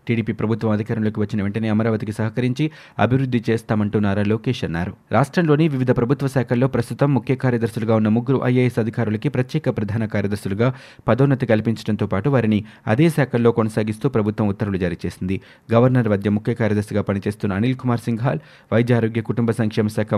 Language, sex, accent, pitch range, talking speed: Telugu, male, native, 105-130 Hz, 150 wpm